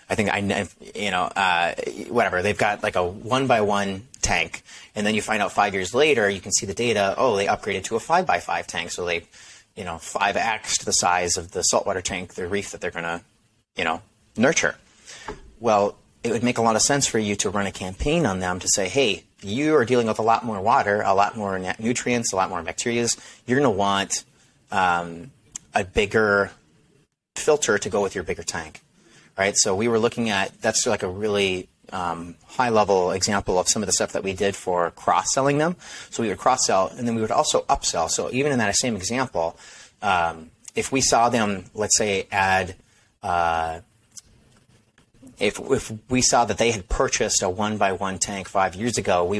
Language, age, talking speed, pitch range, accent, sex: English, 30-49, 205 wpm, 95-115 Hz, American, male